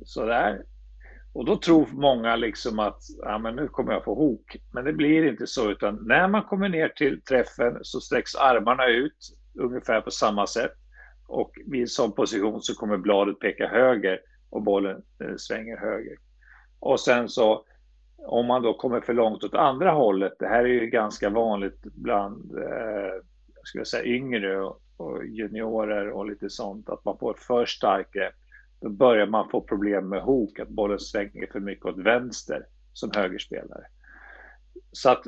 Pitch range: 100-135 Hz